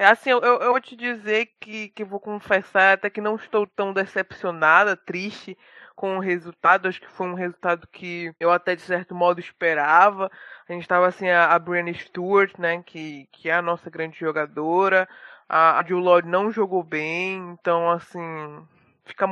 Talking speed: 185 wpm